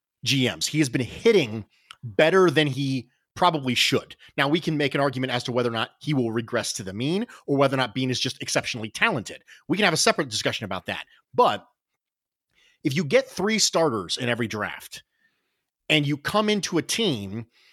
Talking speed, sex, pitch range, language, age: 200 wpm, male, 120-160 Hz, English, 30-49